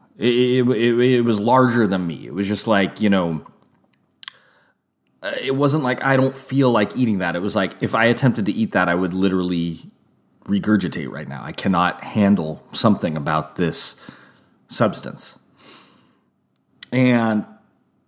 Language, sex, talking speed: English, male, 150 wpm